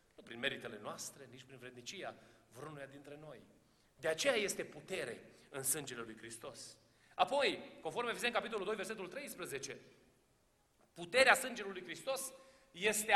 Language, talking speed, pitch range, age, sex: Romanian, 135 wpm, 235-310 Hz, 40-59, male